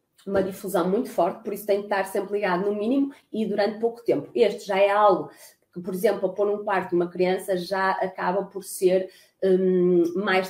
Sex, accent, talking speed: female, Brazilian, 205 wpm